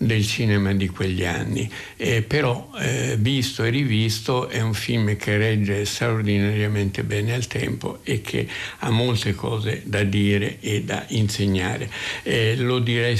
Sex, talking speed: male, 150 wpm